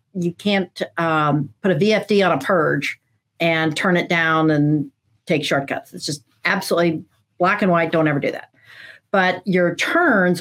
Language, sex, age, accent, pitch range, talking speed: English, female, 50-69, American, 160-200 Hz, 165 wpm